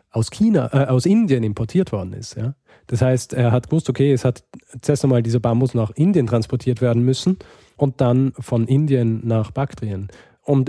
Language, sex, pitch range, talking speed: German, male, 110-130 Hz, 185 wpm